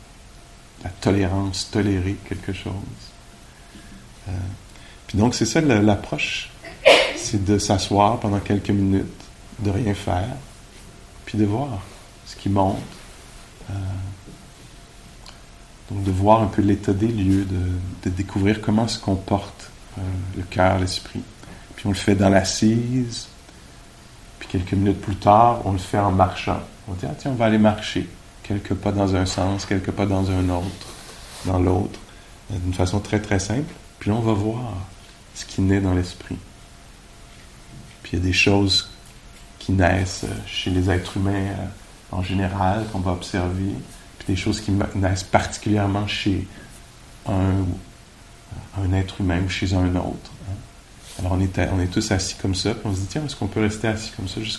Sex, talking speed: male, 165 wpm